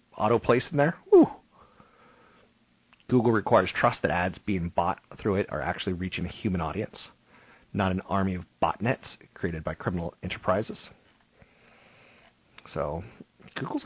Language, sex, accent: English, male, American